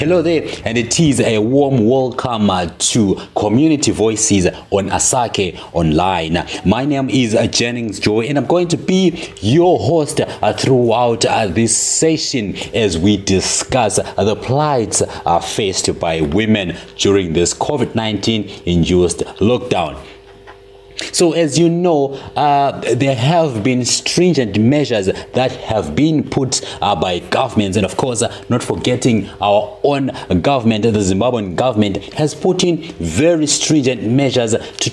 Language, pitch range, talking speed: English, 105-145 Hz, 130 wpm